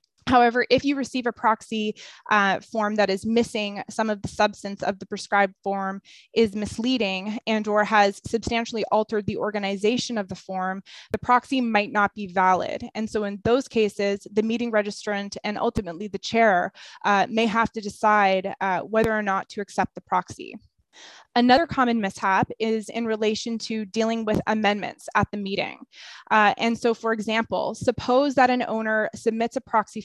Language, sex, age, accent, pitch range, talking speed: English, female, 20-39, American, 205-230 Hz, 175 wpm